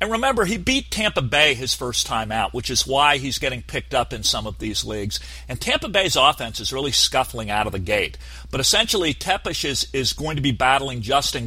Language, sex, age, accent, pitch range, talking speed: English, male, 40-59, American, 110-140 Hz, 225 wpm